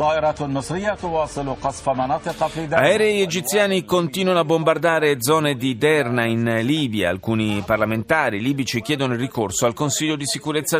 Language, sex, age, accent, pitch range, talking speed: Italian, male, 40-59, native, 120-165 Hz, 110 wpm